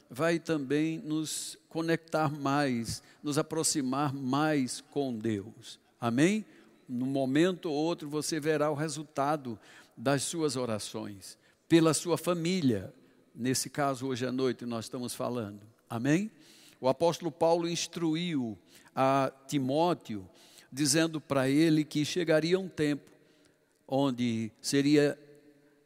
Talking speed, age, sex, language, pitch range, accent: 115 wpm, 60-79, male, Portuguese, 130-170 Hz, Brazilian